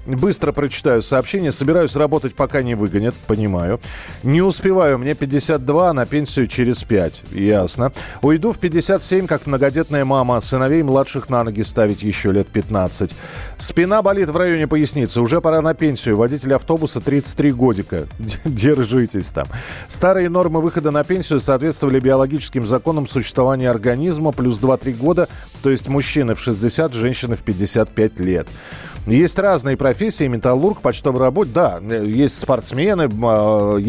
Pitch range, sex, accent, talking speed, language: 110-150 Hz, male, native, 140 wpm, Russian